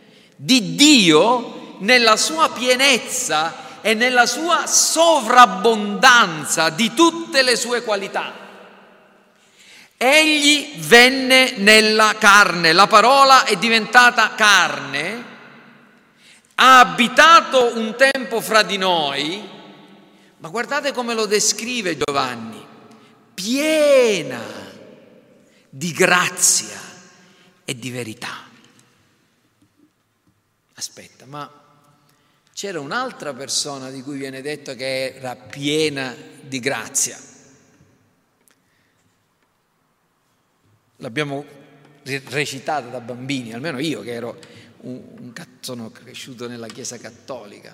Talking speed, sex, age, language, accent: 90 wpm, male, 50-69, Italian, native